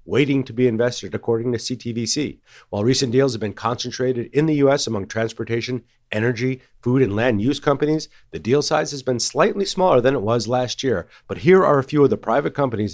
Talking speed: 210 wpm